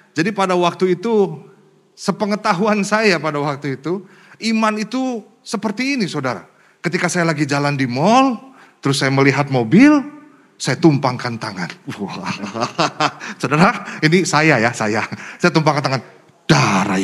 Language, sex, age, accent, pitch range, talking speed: Indonesian, male, 30-49, native, 135-205 Hz, 130 wpm